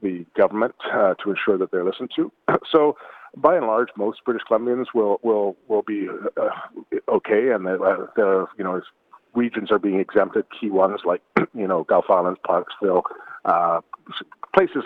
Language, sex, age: English, male, 40-59